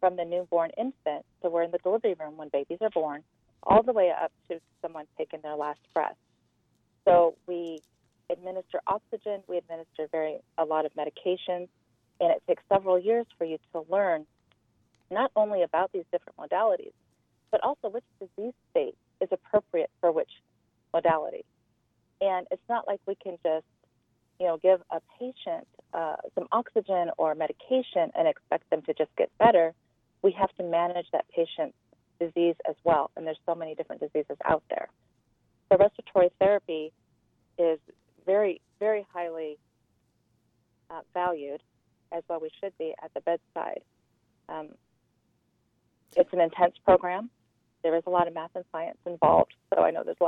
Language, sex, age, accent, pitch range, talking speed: English, female, 40-59, American, 160-200 Hz, 165 wpm